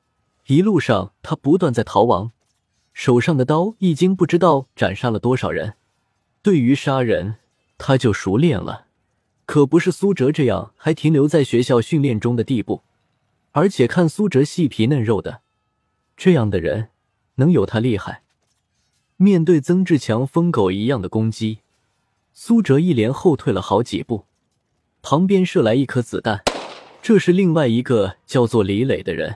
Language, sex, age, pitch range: Chinese, male, 20-39, 115-170 Hz